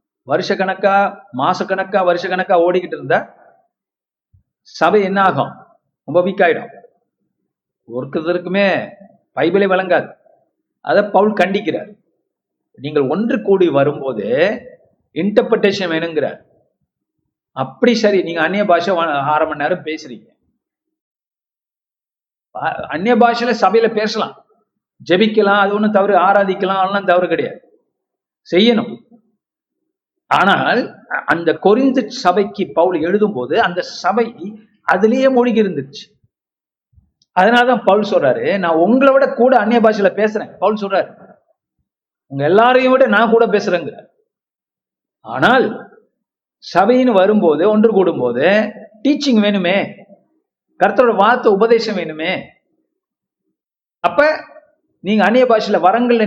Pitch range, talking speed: 180-235 Hz, 95 wpm